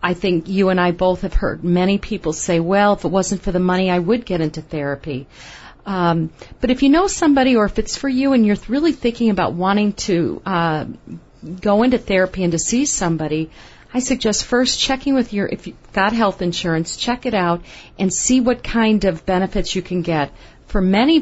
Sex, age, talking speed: female, 40-59, 210 wpm